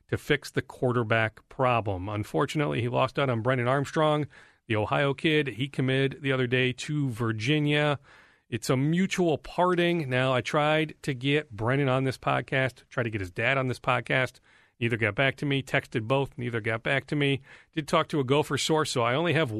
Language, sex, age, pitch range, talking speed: English, male, 40-59, 120-150 Hz, 200 wpm